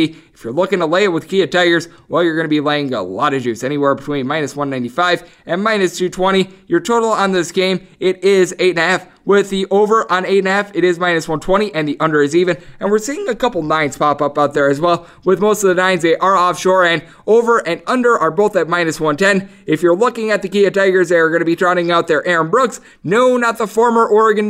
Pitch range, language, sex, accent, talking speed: 165-205 Hz, English, male, American, 245 wpm